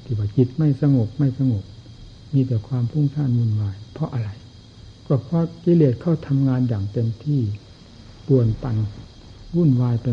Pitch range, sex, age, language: 105-130 Hz, male, 60-79, Thai